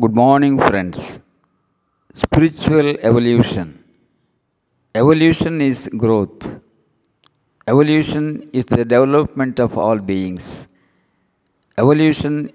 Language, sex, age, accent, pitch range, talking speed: Tamil, male, 60-79, native, 115-135 Hz, 75 wpm